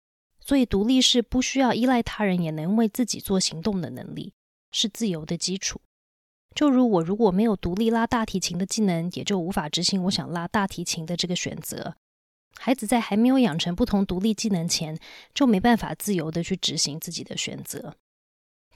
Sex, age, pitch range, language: female, 20-39, 170-225 Hz, Chinese